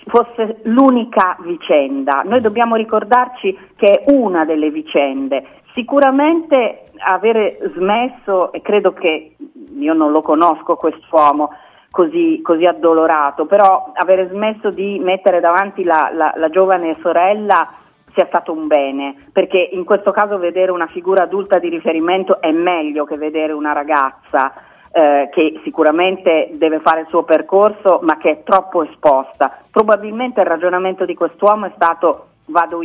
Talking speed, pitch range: 140 wpm, 165-230 Hz